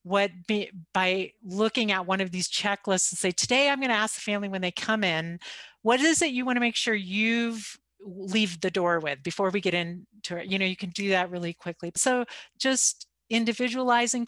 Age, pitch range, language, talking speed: 50-69, 185-235 Hz, English, 215 wpm